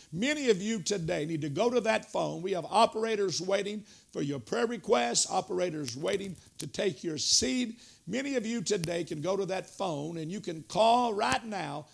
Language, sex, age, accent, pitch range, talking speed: English, male, 50-69, American, 170-225 Hz, 195 wpm